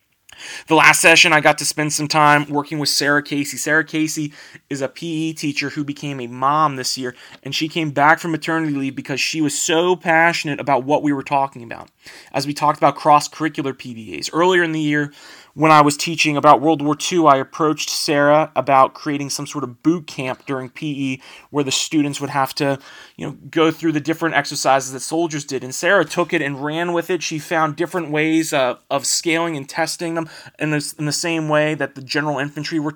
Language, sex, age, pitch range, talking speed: English, male, 30-49, 145-165 Hz, 215 wpm